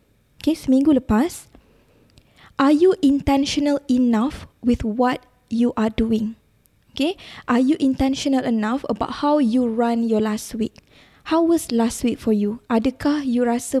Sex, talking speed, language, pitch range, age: female, 145 wpm, Malay, 230-275 Hz, 20-39